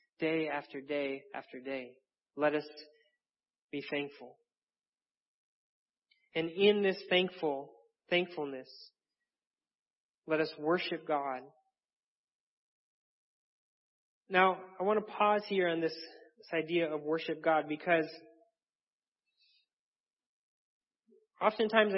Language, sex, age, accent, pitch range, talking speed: English, male, 30-49, American, 155-200 Hz, 90 wpm